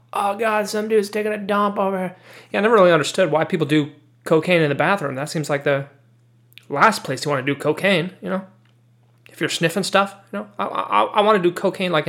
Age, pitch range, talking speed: 30-49, 120-170 Hz, 240 wpm